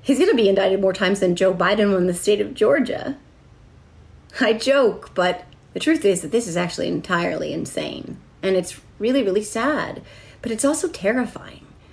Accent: American